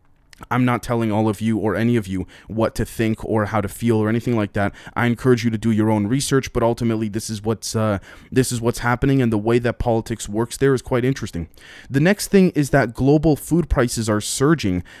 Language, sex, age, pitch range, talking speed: English, male, 20-39, 105-120 Hz, 235 wpm